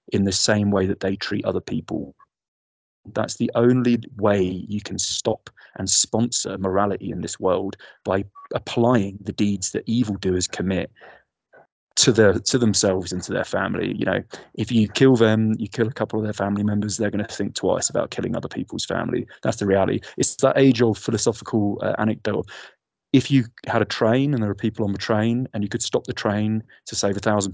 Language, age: English, 20-39